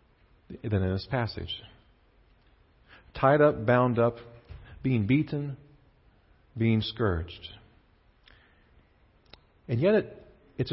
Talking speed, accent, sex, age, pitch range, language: 85 wpm, American, male, 50-69, 100-145 Hz, English